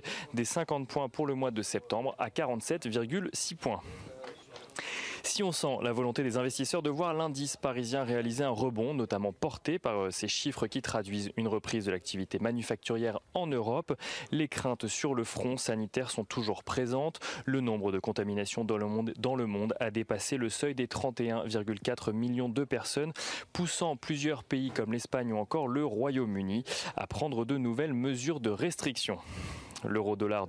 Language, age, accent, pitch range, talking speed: French, 30-49, French, 115-145 Hz, 165 wpm